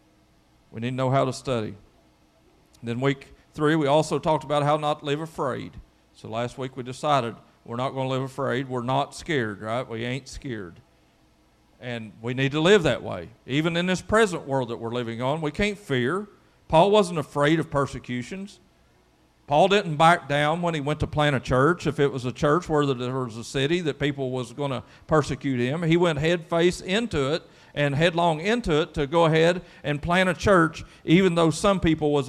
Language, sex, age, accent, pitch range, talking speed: English, male, 40-59, American, 135-180 Hz, 205 wpm